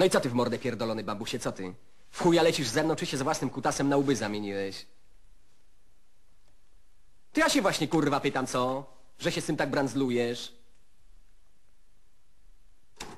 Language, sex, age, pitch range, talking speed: Polish, male, 40-59, 85-120 Hz, 165 wpm